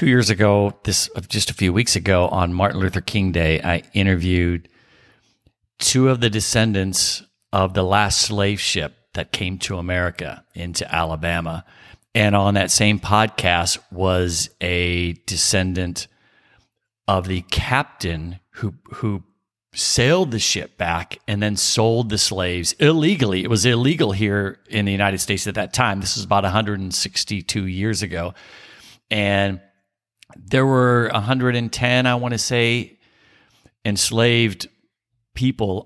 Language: English